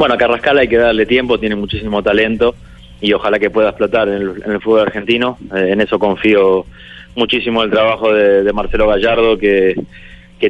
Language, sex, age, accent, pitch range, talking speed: Spanish, male, 20-39, Argentinian, 100-115 Hz, 195 wpm